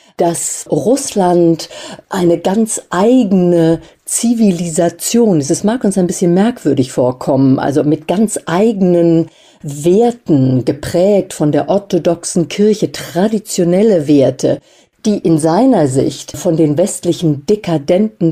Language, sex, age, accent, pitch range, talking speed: German, female, 50-69, German, 160-195 Hz, 110 wpm